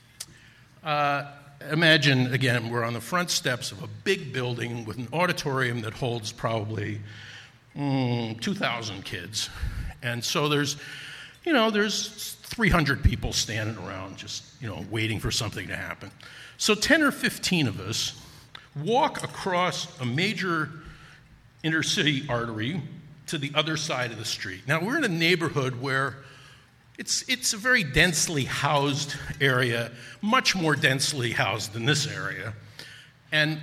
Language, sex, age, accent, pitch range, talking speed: English, male, 50-69, American, 120-160 Hz, 145 wpm